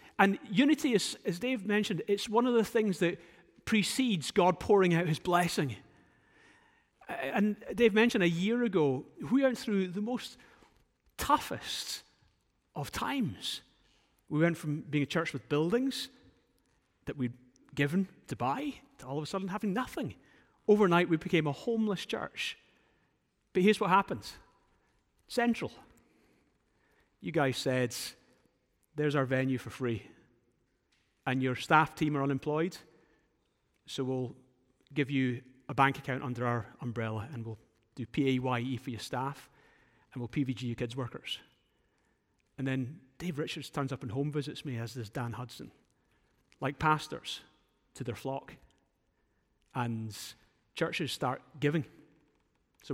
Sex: male